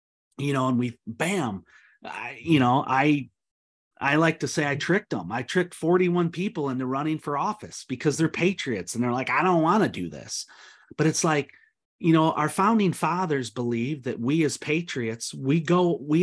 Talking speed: 190 wpm